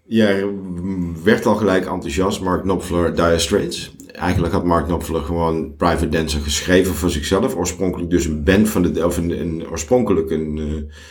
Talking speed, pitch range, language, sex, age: 155 wpm, 85-100 Hz, Dutch, male, 50-69